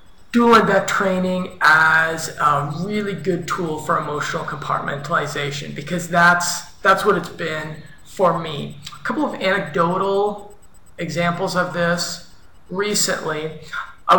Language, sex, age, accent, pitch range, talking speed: English, male, 20-39, American, 155-195 Hz, 120 wpm